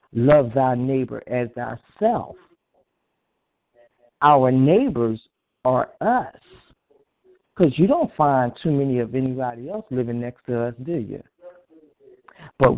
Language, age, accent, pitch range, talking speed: English, 60-79, American, 130-175 Hz, 115 wpm